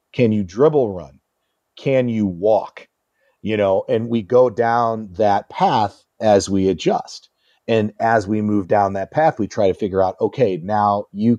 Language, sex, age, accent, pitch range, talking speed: English, male, 40-59, American, 100-125 Hz, 175 wpm